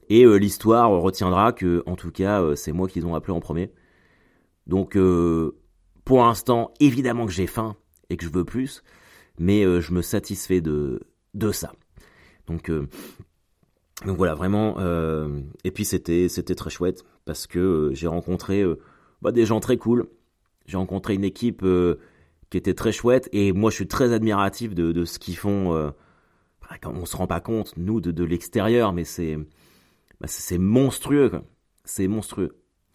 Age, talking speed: 30-49, 180 wpm